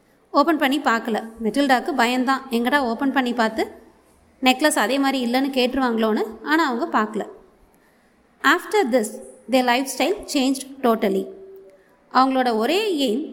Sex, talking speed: female, 120 wpm